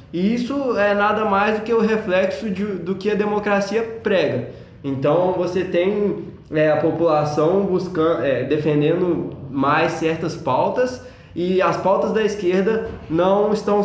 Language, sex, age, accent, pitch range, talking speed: Portuguese, male, 20-39, Brazilian, 155-200 Hz, 130 wpm